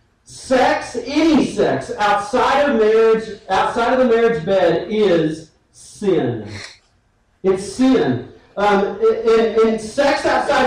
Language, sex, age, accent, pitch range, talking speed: English, male, 40-59, American, 200-250 Hz, 110 wpm